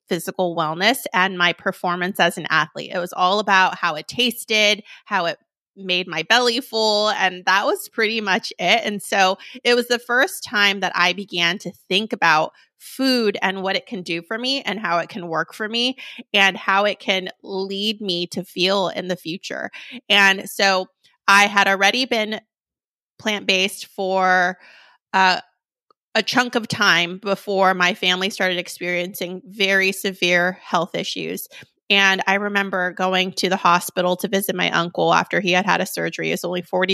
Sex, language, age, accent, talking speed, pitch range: female, English, 30-49, American, 175 wpm, 180-215 Hz